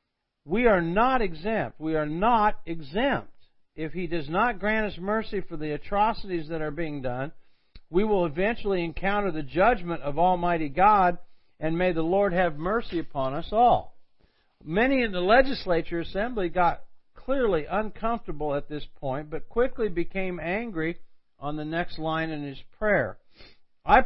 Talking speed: 155 wpm